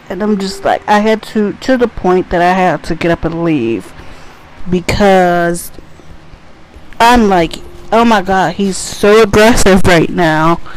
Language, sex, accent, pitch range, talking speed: English, female, American, 165-210 Hz, 160 wpm